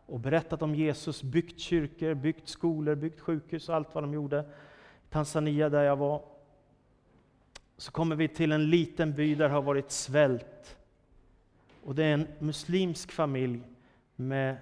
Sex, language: male, Swedish